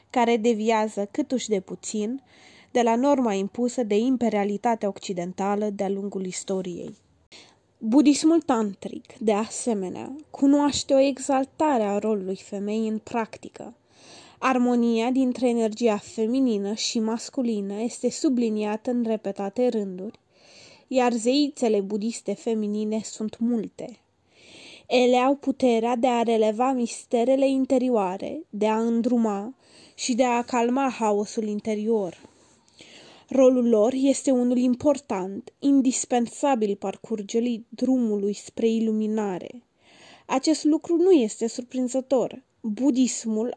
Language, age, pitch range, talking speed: Romanian, 20-39, 215-260 Hz, 105 wpm